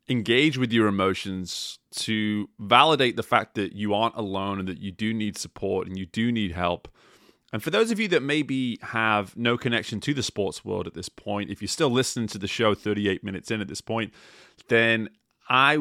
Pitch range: 100-120 Hz